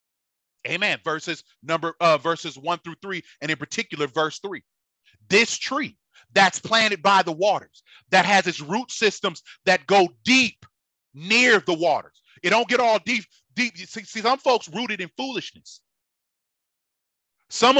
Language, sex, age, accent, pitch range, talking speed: English, male, 30-49, American, 195-265 Hz, 150 wpm